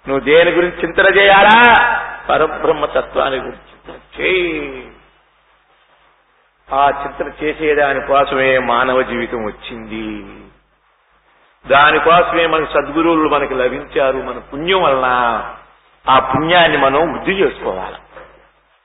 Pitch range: 160-250 Hz